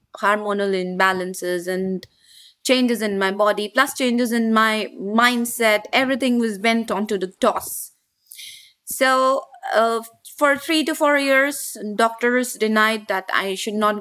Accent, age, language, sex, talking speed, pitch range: Indian, 20-39, English, female, 135 wpm, 195-245 Hz